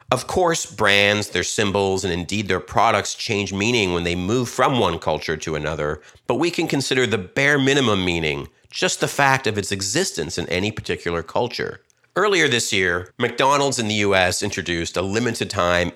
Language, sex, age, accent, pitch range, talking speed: English, male, 50-69, American, 90-120 Hz, 175 wpm